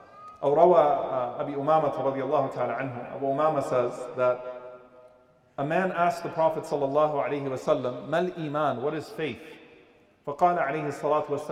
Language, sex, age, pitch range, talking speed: English, male, 40-59, 165-240 Hz, 90 wpm